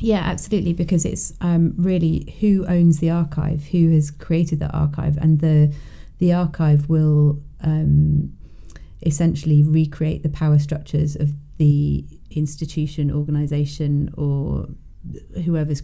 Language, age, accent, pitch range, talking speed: English, 30-49, British, 145-160 Hz, 120 wpm